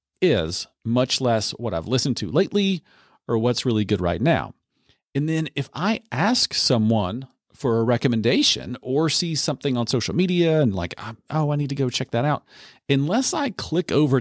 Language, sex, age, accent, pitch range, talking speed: English, male, 40-59, American, 115-145 Hz, 180 wpm